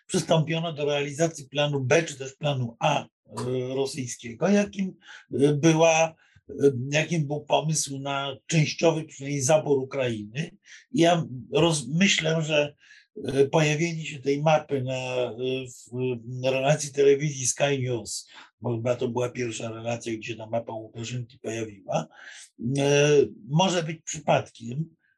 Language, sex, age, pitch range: Polish, male, 50-69, 130-160 Hz